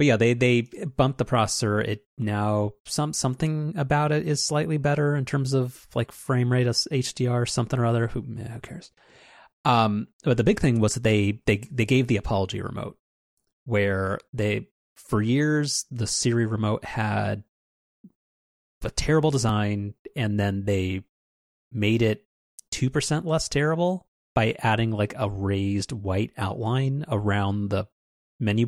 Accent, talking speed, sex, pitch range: American, 155 wpm, male, 100-125 Hz